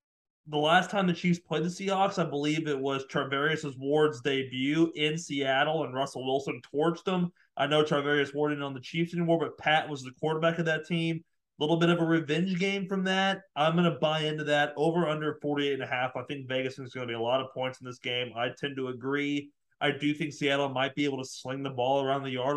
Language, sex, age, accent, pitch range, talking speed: English, male, 30-49, American, 135-165 Hz, 245 wpm